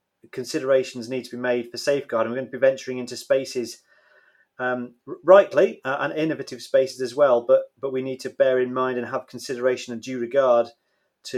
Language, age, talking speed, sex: English, 30-49, 195 wpm, male